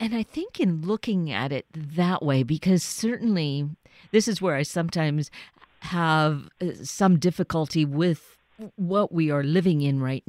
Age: 50-69